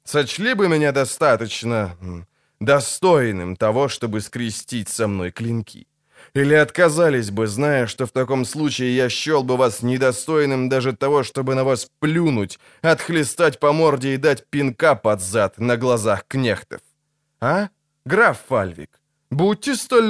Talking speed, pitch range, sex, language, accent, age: 135 wpm, 115-150 Hz, male, Ukrainian, native, 20-39